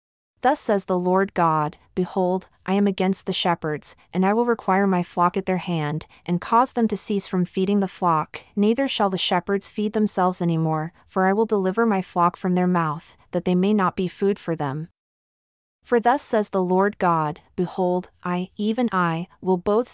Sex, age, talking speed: female, 30-49, 200 wpm